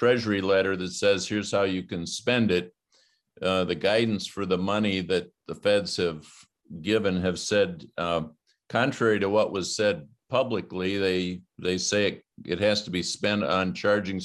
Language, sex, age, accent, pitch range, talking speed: English, male, 50-69, American, 90-105 Hz, 175 wpm